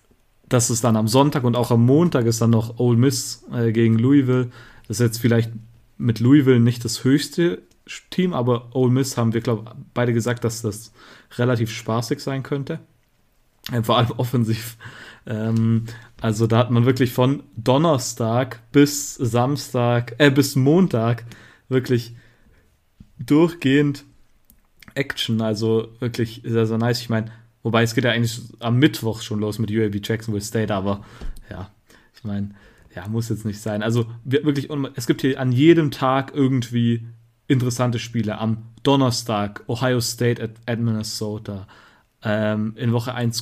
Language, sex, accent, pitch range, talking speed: German, male, German, 110-125 Hz, 155 wpm